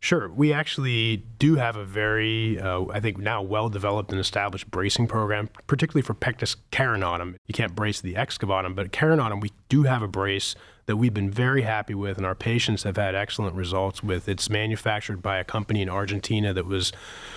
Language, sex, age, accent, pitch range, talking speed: English, male, 30-49, American, 95-110 Hz, 195 wpm